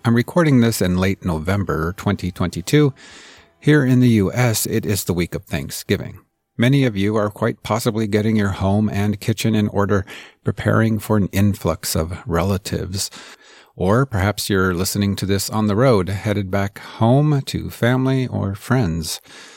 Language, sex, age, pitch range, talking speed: English, male, 50-69, 95-125 Hz, 160 wpm